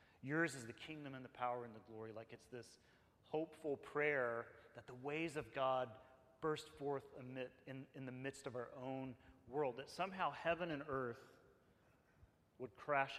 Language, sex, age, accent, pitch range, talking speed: English, male, 30-49, American, 115-140 Hz, 175 wpm